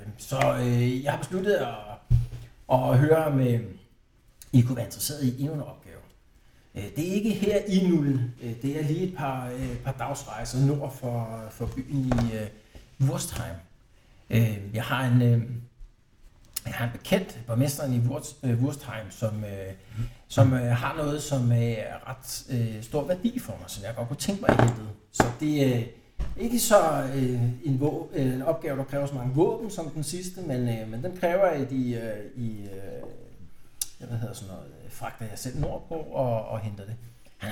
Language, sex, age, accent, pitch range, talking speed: Danish, male, 60-79, native, 115-140 Hz, 175 wpm